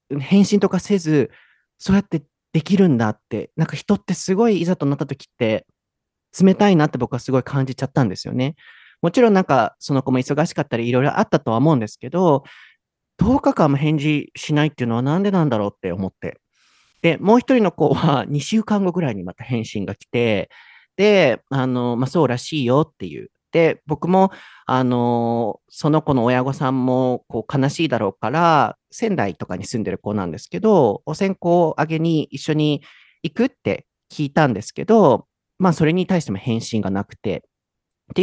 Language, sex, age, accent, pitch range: Japanese, male, 40-59, native, 120-175 Hz